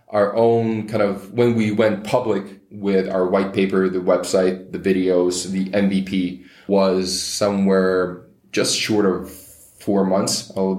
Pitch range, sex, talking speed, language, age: 95-105 Hz, male, 150 wpm, English, 20-39